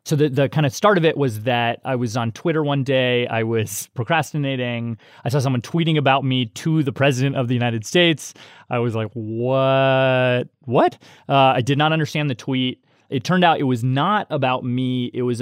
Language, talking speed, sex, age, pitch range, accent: English, 210 wpm, male, 30-49, 115-145 Hz, American